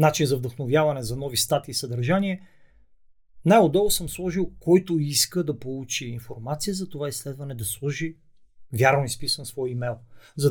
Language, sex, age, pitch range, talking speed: Bulgarian, male, 40-59, 120-150 Hz, 150 wpm